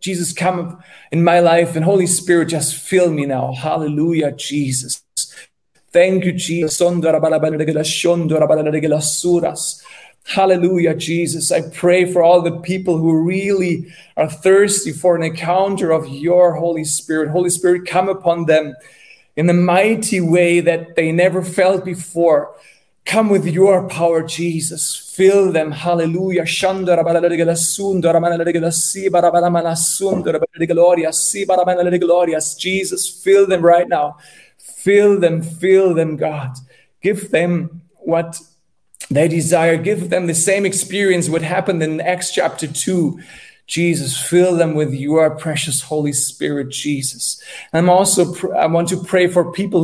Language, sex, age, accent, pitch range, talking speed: English, male, 30-49, German, 160-185 Hz, 125 wpm